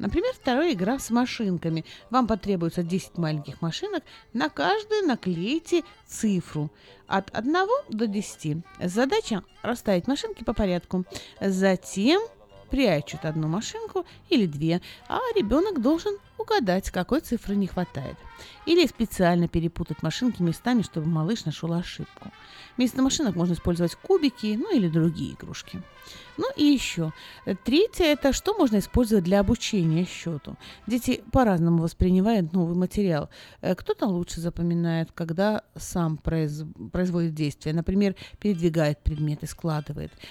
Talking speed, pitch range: 125 wpm, 170-235 Hz